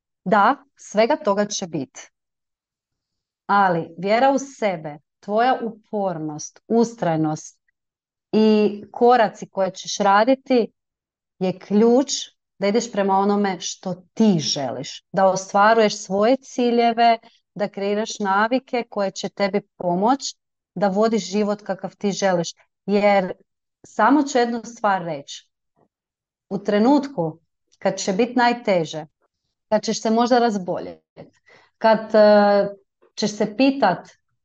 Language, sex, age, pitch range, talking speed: Croatian, female, 30-49, 190-235 Hz, 110 wpm